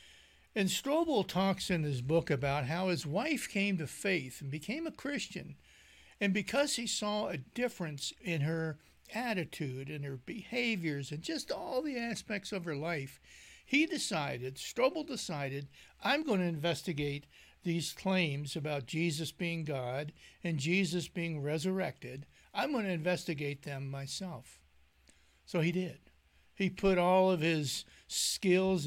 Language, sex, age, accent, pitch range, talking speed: English, male, 60-79, American, 145-200 Hz, 145 wpm